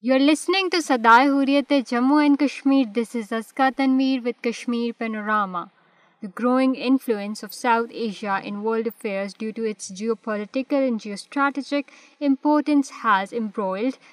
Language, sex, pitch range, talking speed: Urdu, female, 210-270 Hz, 145 wpm